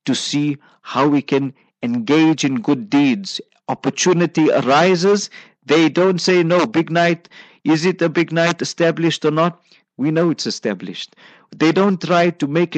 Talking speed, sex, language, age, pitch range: 160 wpm, male, English, 50-69, 135-180 Hz